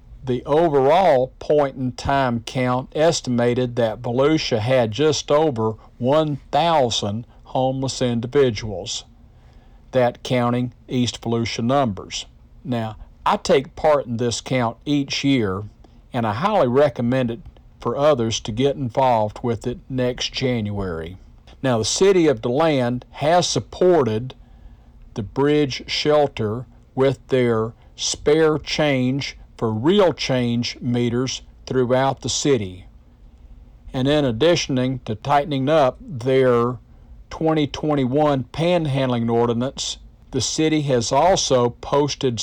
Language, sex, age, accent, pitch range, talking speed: English, male, 50-69, American, 115-145 Hz, 110 wpm